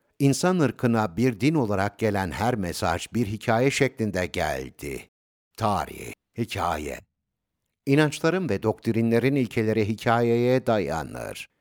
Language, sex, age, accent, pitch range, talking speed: Turkish, male, 60-79, native, 95-130 Hz, 105 wpm